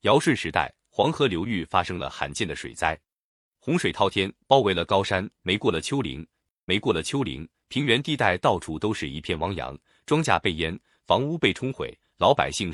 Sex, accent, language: male, native, Chinese